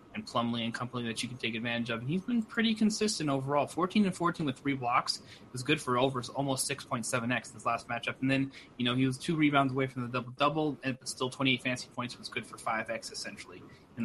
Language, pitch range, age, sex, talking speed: English, 115-140 Hz, 20-39, male, 250 wpm